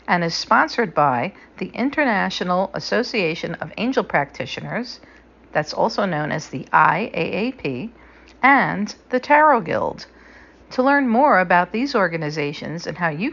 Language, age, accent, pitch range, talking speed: English, 50-69, American, 170-255 Hz, 130 wpm